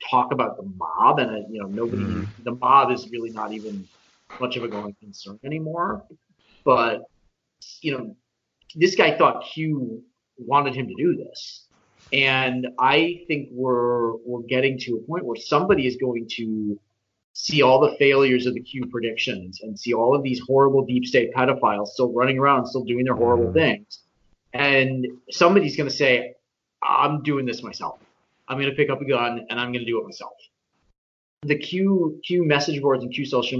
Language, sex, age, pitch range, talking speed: English, male, 30-49, 115-140 Hz, 180 wpm